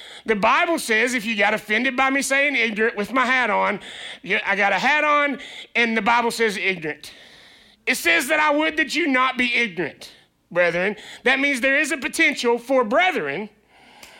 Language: English